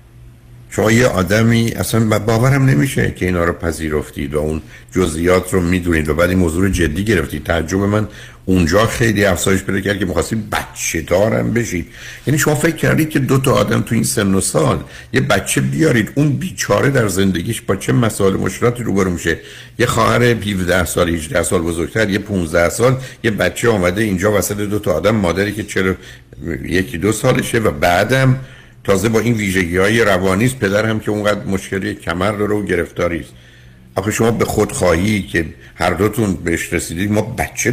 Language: Persian